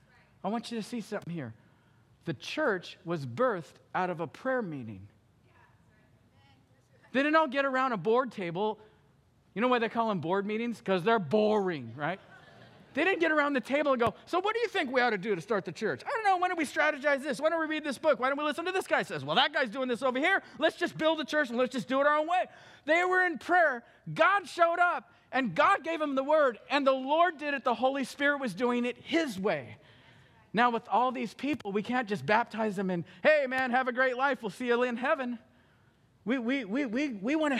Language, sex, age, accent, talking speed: English, male, 50-69, American, 245 wpm